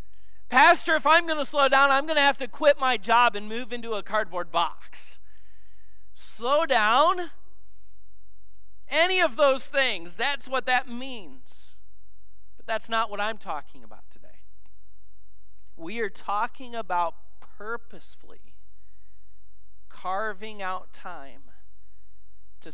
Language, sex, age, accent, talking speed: English, male, 40-59, American, 125 wpm